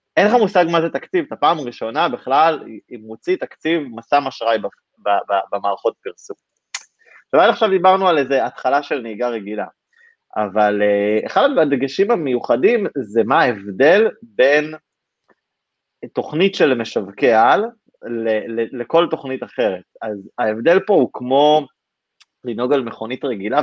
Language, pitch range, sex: Hebrew, 110-165 Hz, male